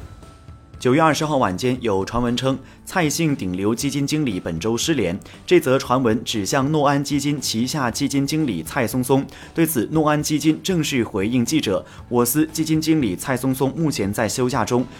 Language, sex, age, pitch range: Chinese, male, 30-49, 115-155 Hz